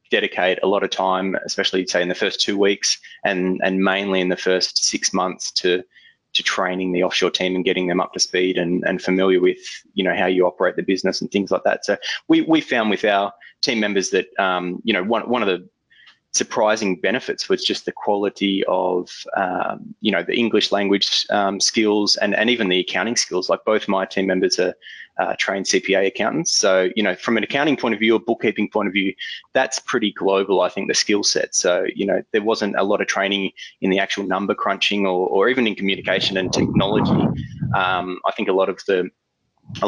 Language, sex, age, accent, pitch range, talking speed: English, male, 20-39, Australian, 90-100 Hz, 220 wpm